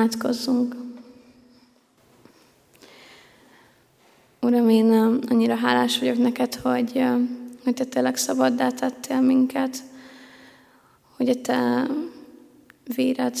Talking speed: 75 wpm